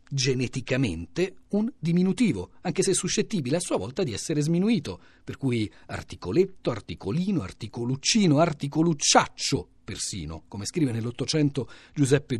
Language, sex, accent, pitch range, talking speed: Italian, male, native, 125-175 Hz, 110 wpm